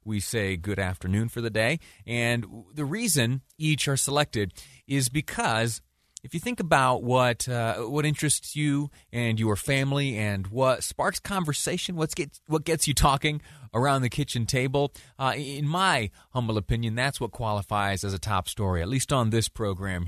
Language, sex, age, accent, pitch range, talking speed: English, male, 30-49, American, 100-145 Hz, 165 wpm